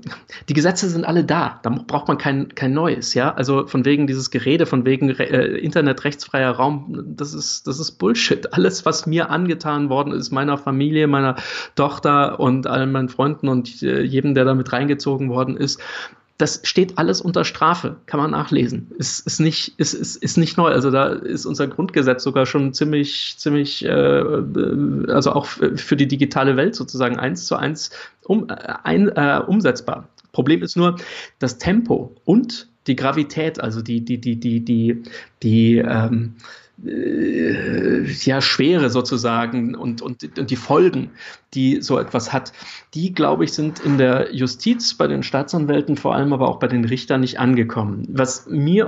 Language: German